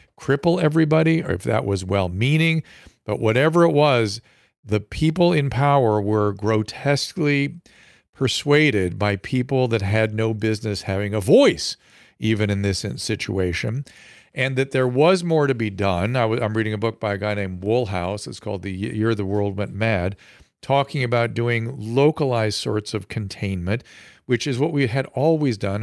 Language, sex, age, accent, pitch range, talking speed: English, male, 50-69, American, 110-140 Hz, 165 wpm